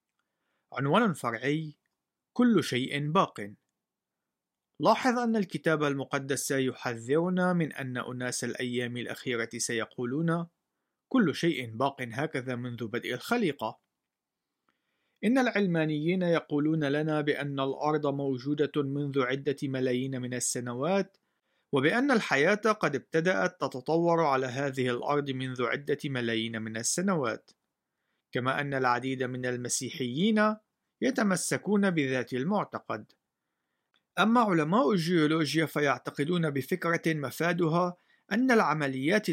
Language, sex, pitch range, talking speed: Arabic, male, 130-185 Hz, 100 wpm